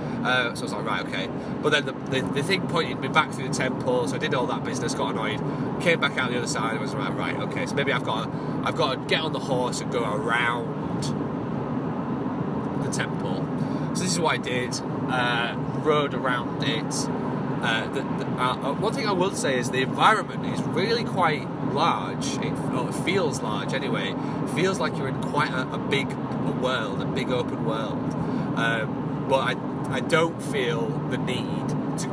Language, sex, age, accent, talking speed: English, male, 30-49, British, 205 wpm